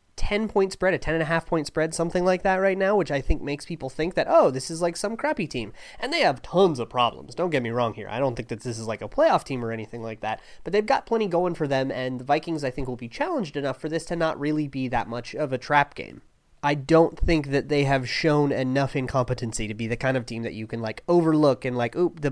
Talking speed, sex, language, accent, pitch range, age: 270 wpm, male, English, American, 125-165 Hz, 20-39